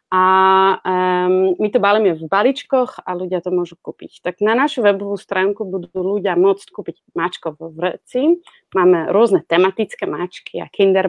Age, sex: 30-49, female